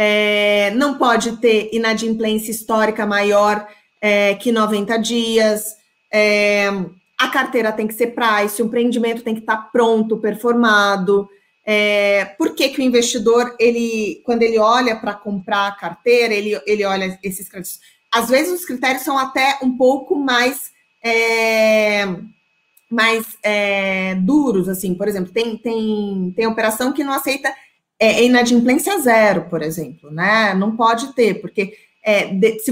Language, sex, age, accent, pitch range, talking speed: Portuguese, female, 20-39, Brazilian, 210-245 Hz, 145 wpm